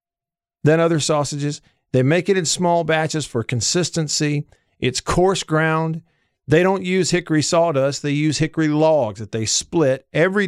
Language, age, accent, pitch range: English, 50-69, American, 125-175 Hz